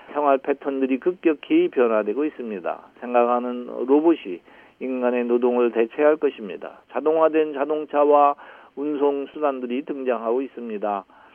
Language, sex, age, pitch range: Korean, male, 40-59, 120-150 Hz